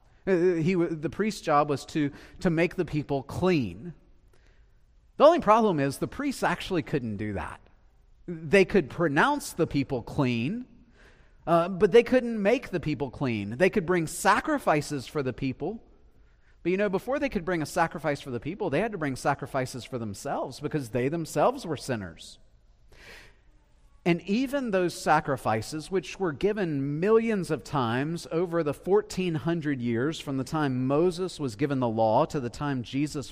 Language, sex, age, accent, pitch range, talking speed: English, male, 40-59, American, 120-180 Hz, 165 wpm